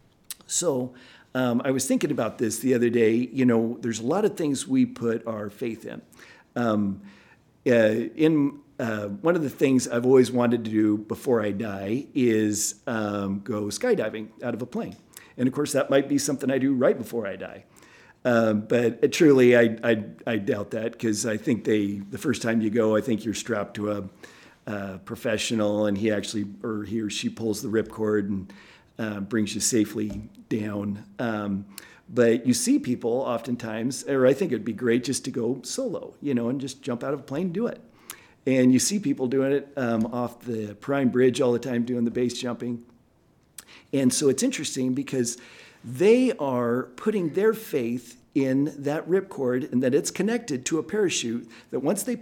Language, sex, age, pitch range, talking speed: English, male, 50-69, 110-140 Hz, 195 wpm